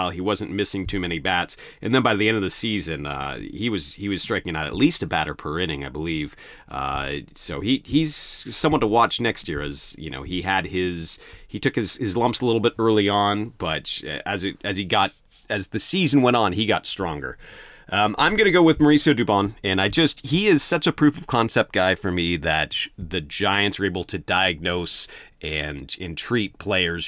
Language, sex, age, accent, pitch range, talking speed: English, male, 30-49, American, 90-120 Hz, 220 wpm